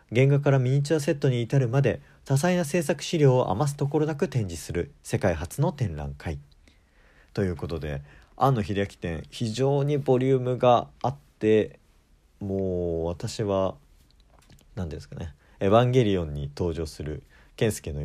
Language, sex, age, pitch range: Japanese, male, 40-59, 80-130 Hz